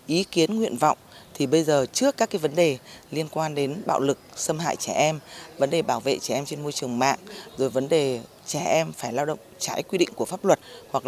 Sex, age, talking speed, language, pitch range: female, 20-39, 250 wpm, Vietnamese, 130-170 Hz